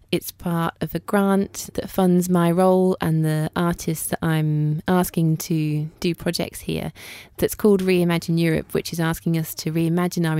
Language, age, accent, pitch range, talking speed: English, 20-39, British, 160-190 Hz, 175 wpm